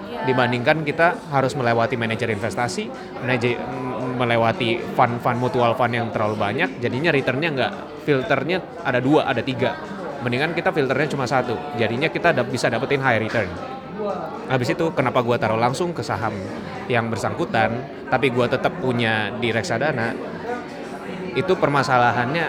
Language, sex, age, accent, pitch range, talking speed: Indonesian, male, 20-39, native, 120-155 Hz, 135 wpm